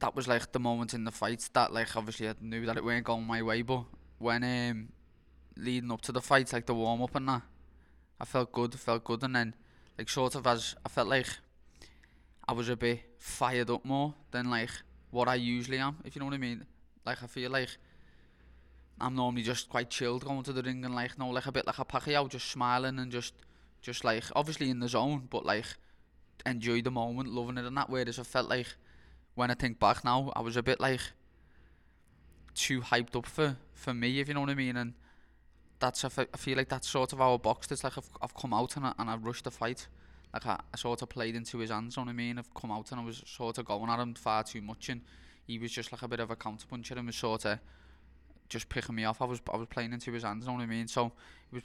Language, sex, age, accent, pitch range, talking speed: English, male, 20-39, British, 110-125 Hz, 255 wpm